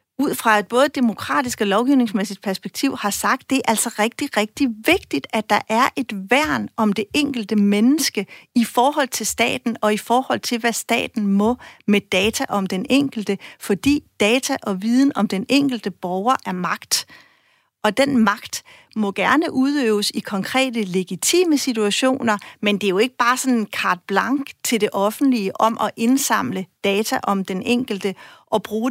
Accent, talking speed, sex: native, 170 wpm, female